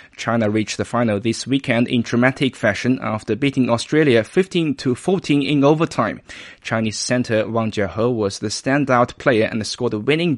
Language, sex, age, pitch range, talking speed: English, male, 20-39, 115-140 Hz, 155 wpm